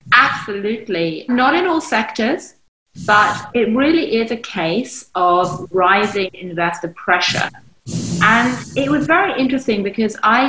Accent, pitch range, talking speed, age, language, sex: British, 180-245 Hz, 125 wpm, 30-49, English, female